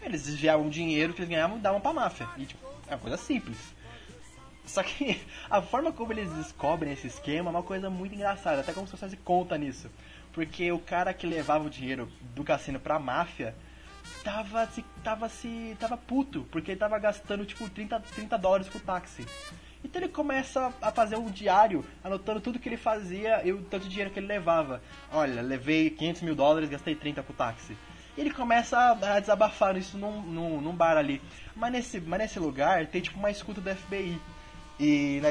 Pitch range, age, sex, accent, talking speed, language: 150-210 Hz, 20-39, male, Brazilian, 195 wpm, Portuguese